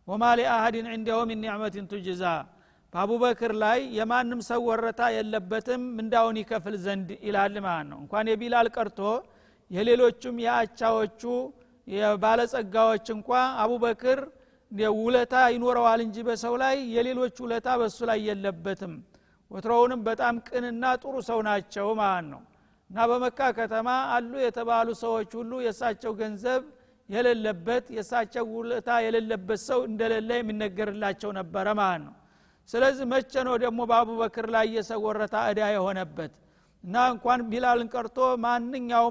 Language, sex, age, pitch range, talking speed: Amharic, male, 50-69, 215-245 Hz, 120 wpm